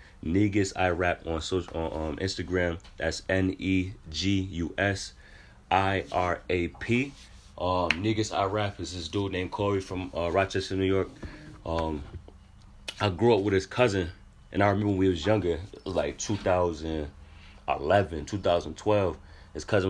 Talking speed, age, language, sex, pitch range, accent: 135 wpm, 30-49, English, male, 85-105 Hz, American